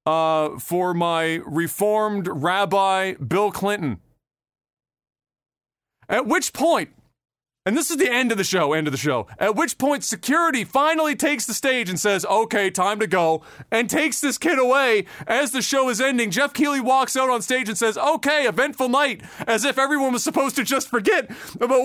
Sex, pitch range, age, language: male, 175-260 Hz, 30-49, English